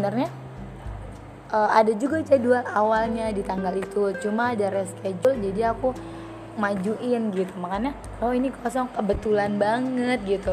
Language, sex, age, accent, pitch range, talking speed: Indonesian, female, 20-39, native, 195-235 Hz, 125 wpm